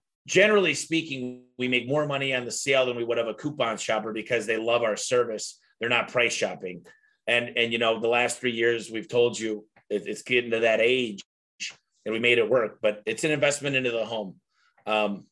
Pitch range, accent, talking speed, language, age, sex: 110-140 Hz, American, 210 wpm, English, 30-49, male